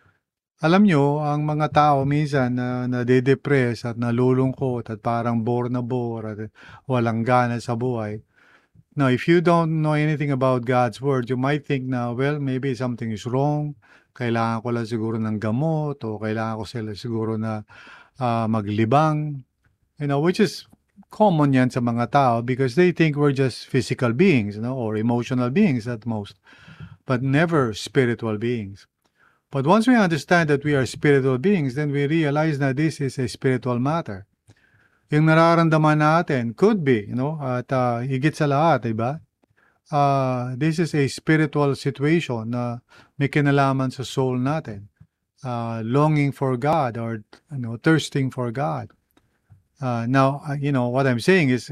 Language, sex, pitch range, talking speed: English, male, 120-145 Hz, 160 wpm